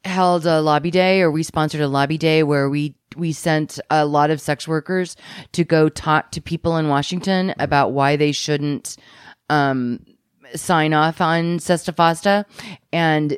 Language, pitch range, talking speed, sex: English, 155-190 Hz, 160 wpm, female